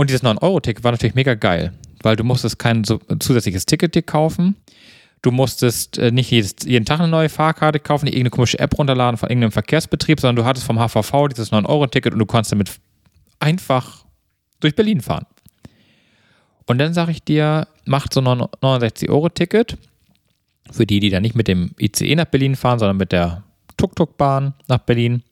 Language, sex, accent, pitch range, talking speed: German, male, German, 110-145 Hz, 175 wpm